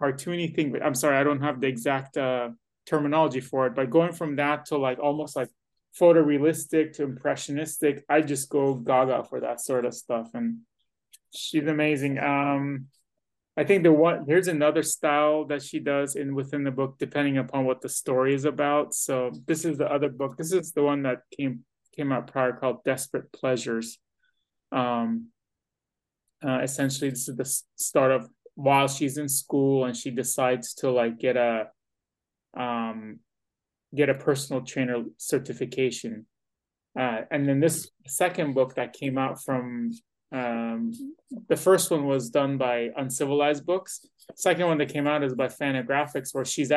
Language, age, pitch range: English, 20-39, 130-150 Hz